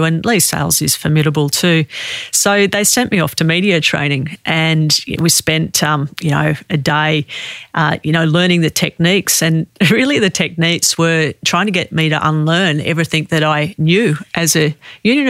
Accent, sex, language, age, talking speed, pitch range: Australian, female, English, 40-59, 180 wpm, 155-180 Hz